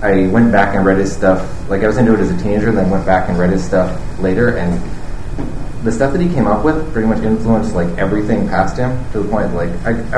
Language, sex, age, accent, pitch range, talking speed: English, male, 30-49, American, 90-110 Hz, 260 wpm